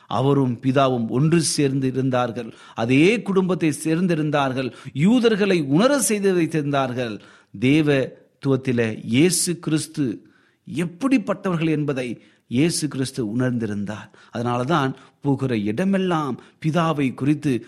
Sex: male